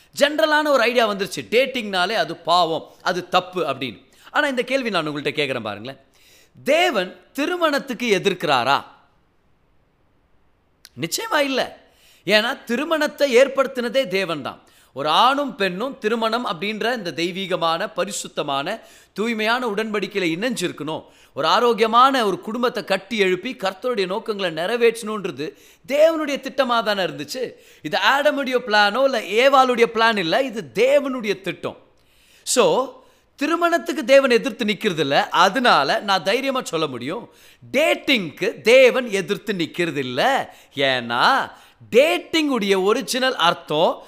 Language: Tamil